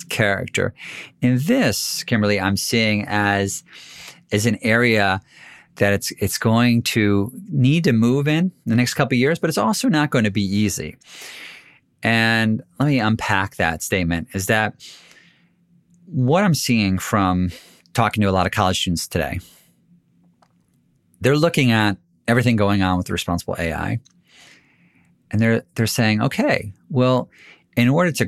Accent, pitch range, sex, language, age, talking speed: American, 105-135 Hz, male, English, 40-59, 150 wpm